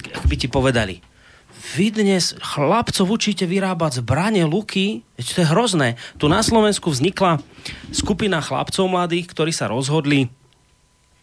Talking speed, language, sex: 130 wpm, Slovak, male